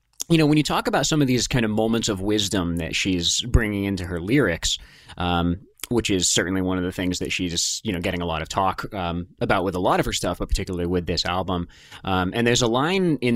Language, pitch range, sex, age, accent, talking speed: English, 90-120 Hz, male, 30-49, American, 250 wpm